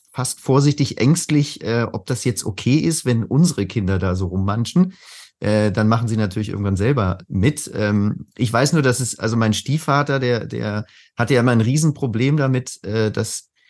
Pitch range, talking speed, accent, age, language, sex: 110-140 Hz, 185 wpm, German, 30-49, German, male